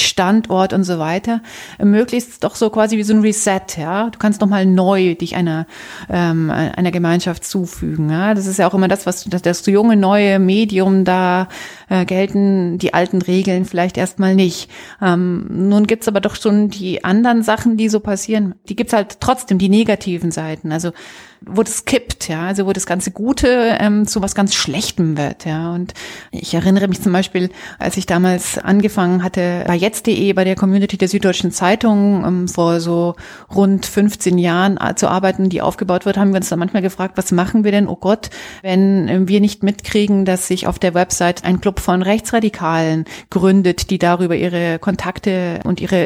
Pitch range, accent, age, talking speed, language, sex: 180-205 Hz, German, 30-49, 190 wpm, German, female